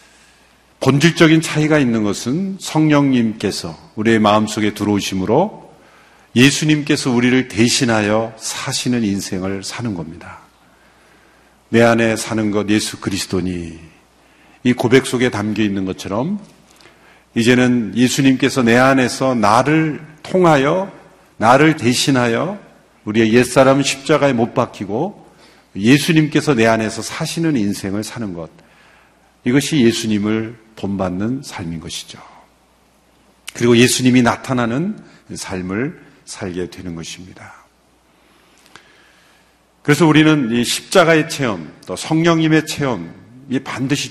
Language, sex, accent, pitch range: Korean, male, native, 105-135 Hz